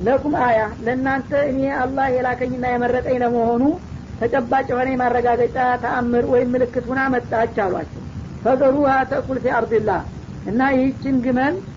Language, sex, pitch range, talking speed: Amharic, female, 245-265 Hz, 110 wpm